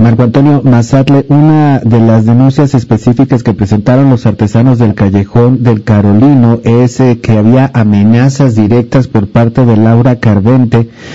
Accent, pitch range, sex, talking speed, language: Mexican, 115-135 Hz, male, 145 wpm, Spanish